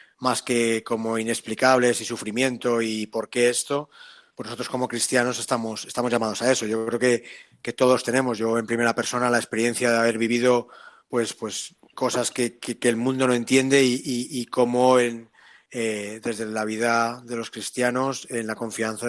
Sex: male